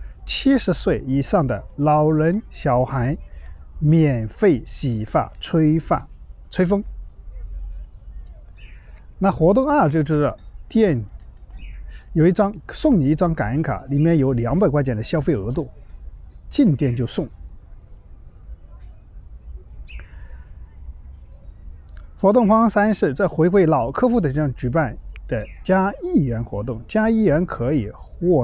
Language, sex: Chinese, male